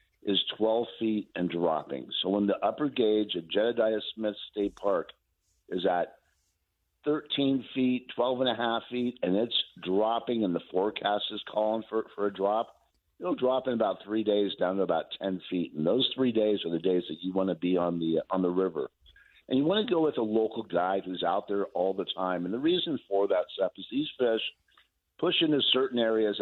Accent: American